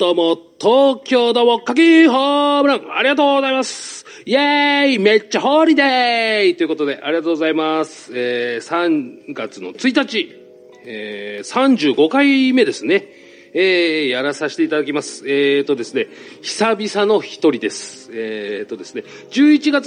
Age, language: 40-59, Japanese